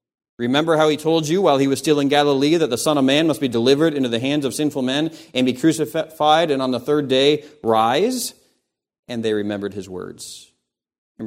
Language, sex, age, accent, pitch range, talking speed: English, male, 40-59, American, 120-150 Hz, 215 wpm